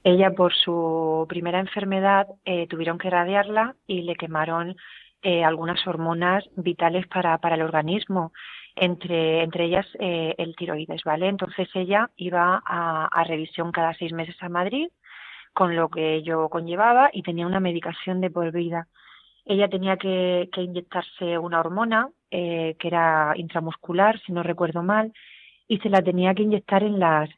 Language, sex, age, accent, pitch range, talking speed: Spanish, female, 30-49, Spanish, 170-205 Hz, 160 wpm